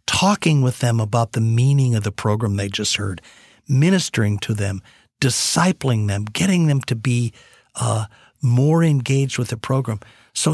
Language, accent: English, American